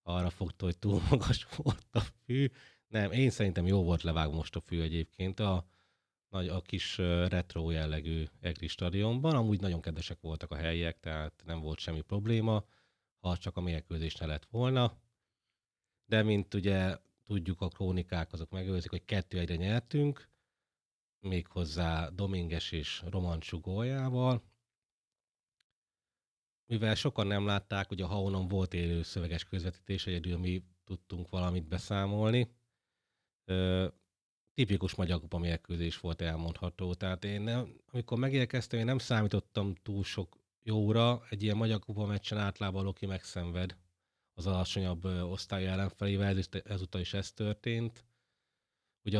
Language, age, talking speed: Hungarian, 30-49, 130 wpm